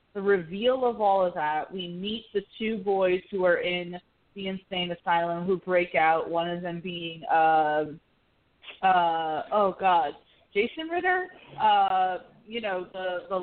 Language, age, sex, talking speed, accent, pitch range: English, 30-49, female, 155 wpm, American, 180-230 Hz